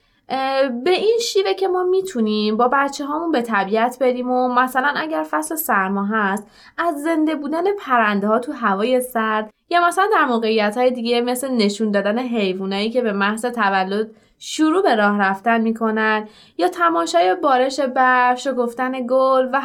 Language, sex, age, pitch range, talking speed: Persian, female, 20-39, 205-290 Hz, 160 wpm